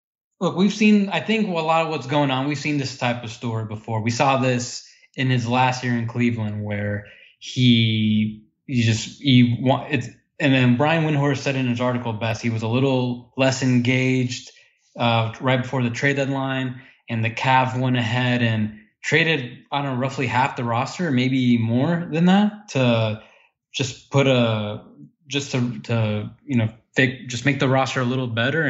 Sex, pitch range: male, 115-135 Hz